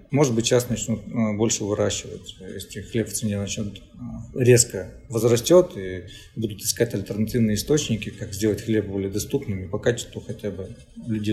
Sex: male